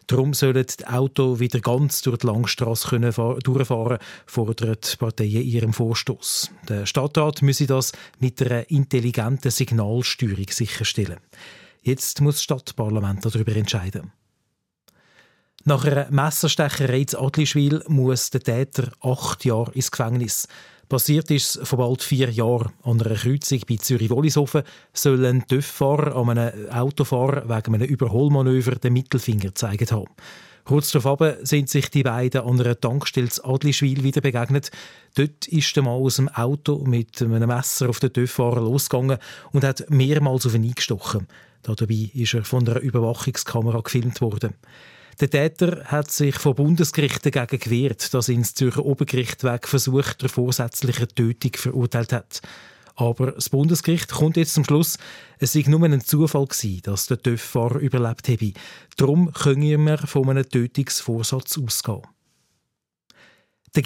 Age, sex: 40-59, male